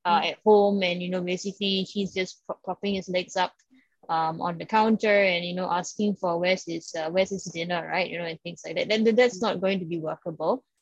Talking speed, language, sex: 240 wpm, English, female